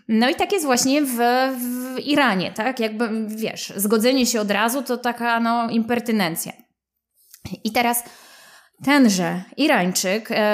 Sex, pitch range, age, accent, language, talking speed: female, 210-255 Hz, 20-39, native, Polish, 130 wpm